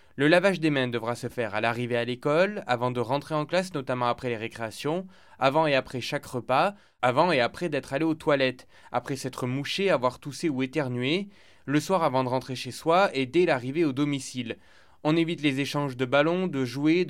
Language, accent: French, French